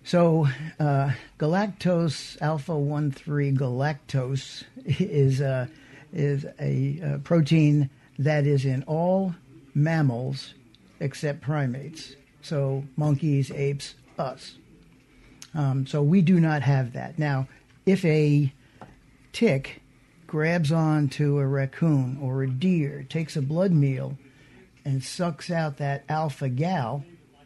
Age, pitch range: 50-69, 135-155 Hz